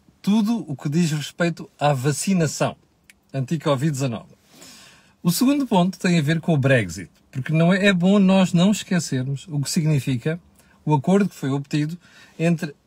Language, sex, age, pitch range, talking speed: Portuguese, male, 40-59, 135-180 Hz, 155 wpm